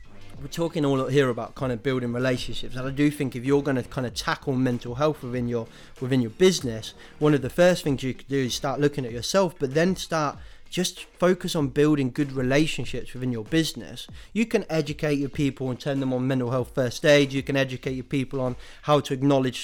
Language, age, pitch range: English, 30-49, 125-150 Hz